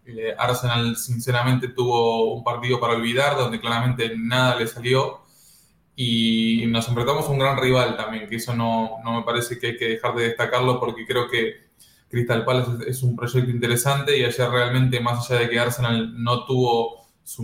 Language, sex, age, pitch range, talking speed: English, male, 20-39, 115-130 Hz, 180 wpm